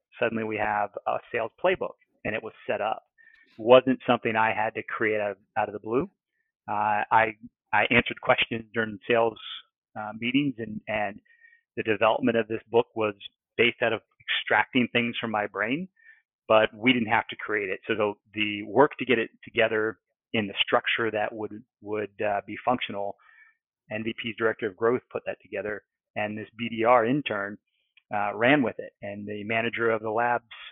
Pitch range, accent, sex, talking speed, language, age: 105-130 Hz, American, male, 185 wpm, English, 40-59